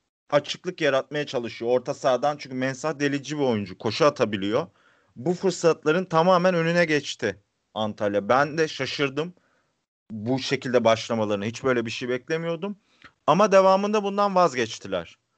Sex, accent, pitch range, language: male, native, 125-165 Hz, Turkish